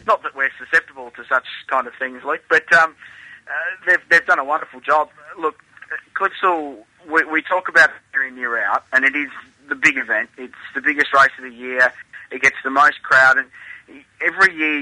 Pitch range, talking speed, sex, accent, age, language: 125-150 Hz, 205 wpm, male, Australian, 20-39, English